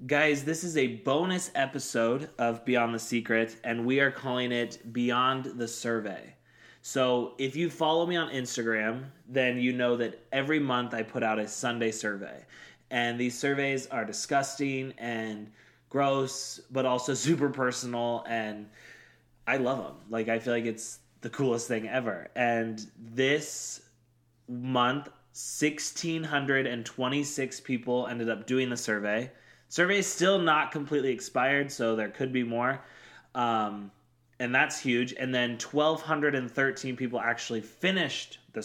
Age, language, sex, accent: 20-39, English, male, American